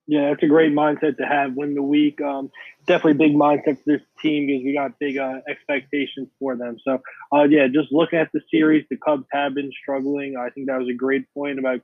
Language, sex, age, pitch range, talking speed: English, male, 20-39, 130-145 Hz, 235 wpm